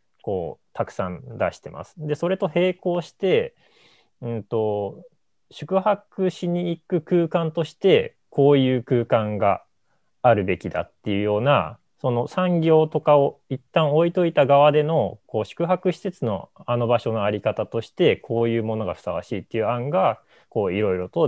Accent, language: native, Japanese